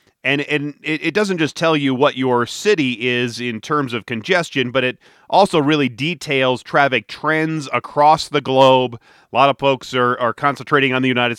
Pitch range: 125-155 Hz